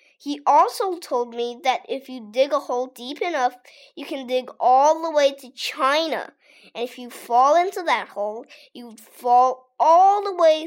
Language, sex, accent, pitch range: Chinese, female, American, 235-320 Hz